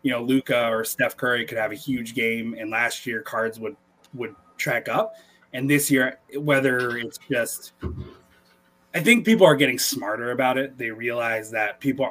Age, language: 20-39, English